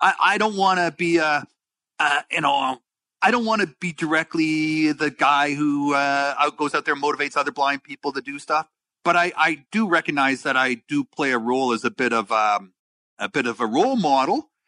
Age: 40-59